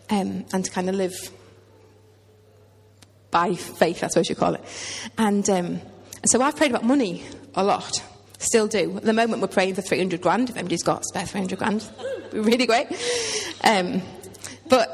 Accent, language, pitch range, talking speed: British, English, 185-230 Hz, 195 wpm